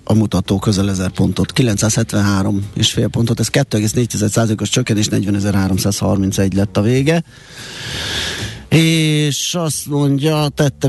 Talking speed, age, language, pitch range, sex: 110 wpm, 30-49, Hungarian, 105-135 Hz, male